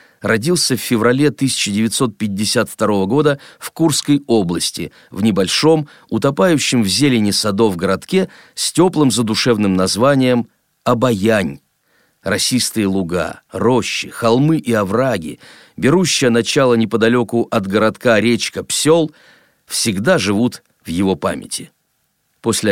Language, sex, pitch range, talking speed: Russian, male, 110-145 Hz, 105 wpm